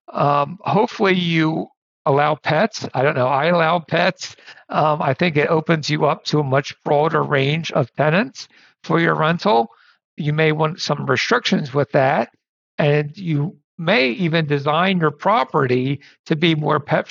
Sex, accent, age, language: male, American, 60-79, English